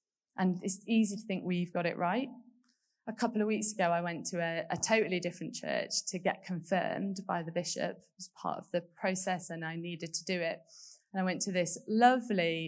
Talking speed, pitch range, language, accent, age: 220 wpm, 175-245 Hz, English, British, 20-39